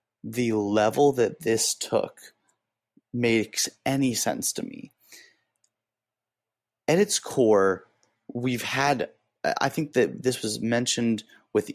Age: 30-49